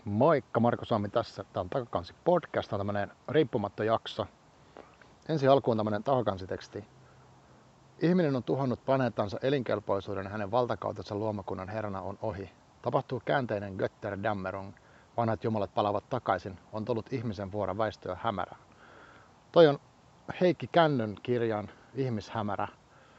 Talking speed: 125 wpm